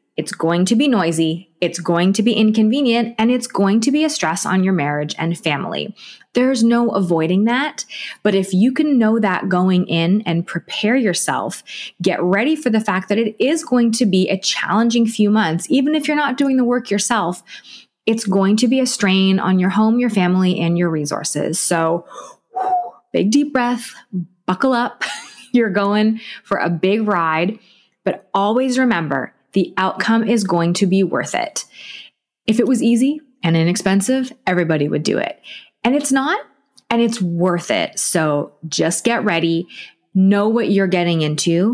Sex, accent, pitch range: female, American, 180-240 Hz